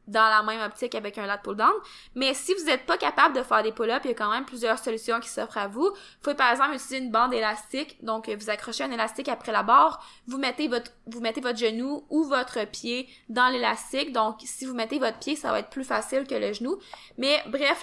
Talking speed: 245 wpm